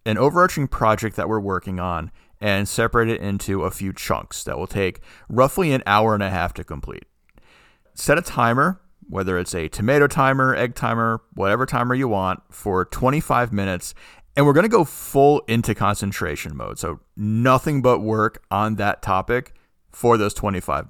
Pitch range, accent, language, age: 100-125 Hz, American, English, 40-59